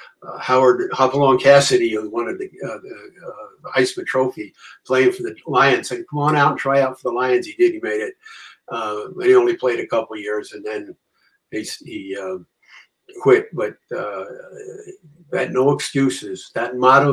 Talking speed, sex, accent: 190 wpm, male, American